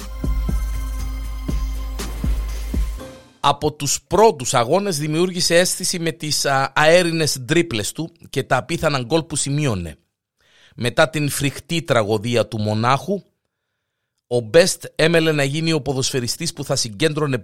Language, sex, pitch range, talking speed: Greek, male, 115-150 Hz, 115 wpm